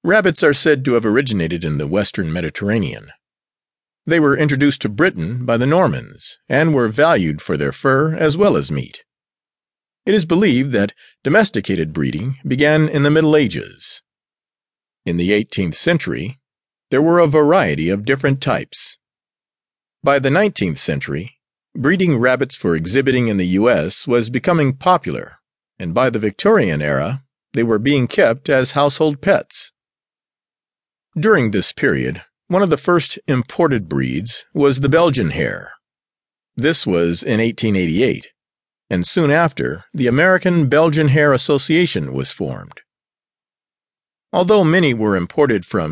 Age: 50-69